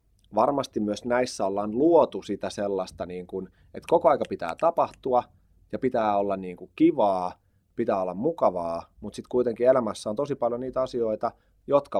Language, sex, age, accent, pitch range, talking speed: English, male, 30-49, Finnish, 95-115 Hz, 150 wpm